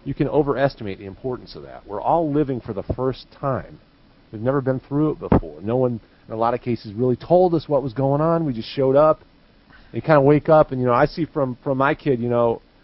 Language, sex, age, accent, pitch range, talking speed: English, male, 40-59, American, 110-145 Hz, 250 wpm